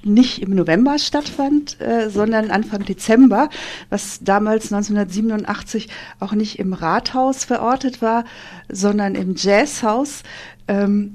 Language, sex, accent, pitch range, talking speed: German, female, German, 185-225 Hz, 115 wpm